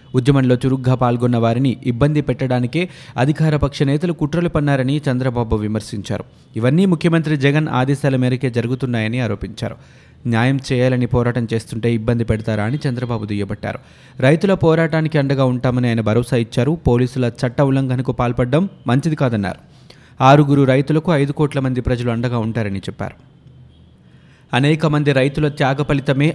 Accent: native